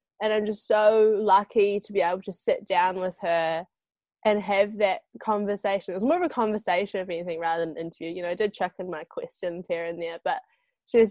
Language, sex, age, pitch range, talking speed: English, female, 10-29, 190-245 Hz, 230 wpm